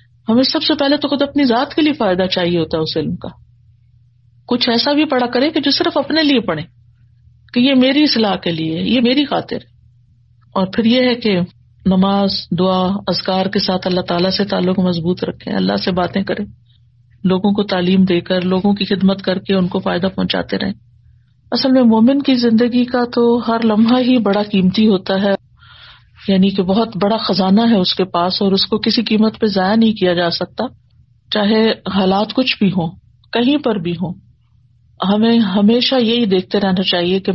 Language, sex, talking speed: Urdu, female, 195 wpm